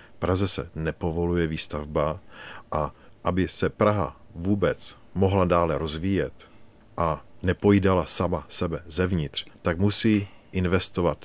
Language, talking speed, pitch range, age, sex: Czech, 105 wpm, 80-100 Hz, 50-69, male